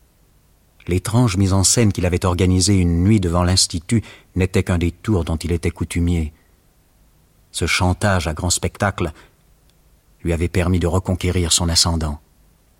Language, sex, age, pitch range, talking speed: French, male, 50-69, 85-95 Hz, 145 wpm